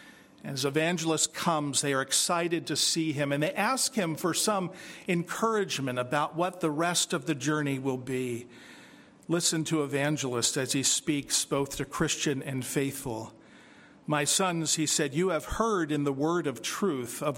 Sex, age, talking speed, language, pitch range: male, 50-69, 170 wpm, English, 135-165 Hz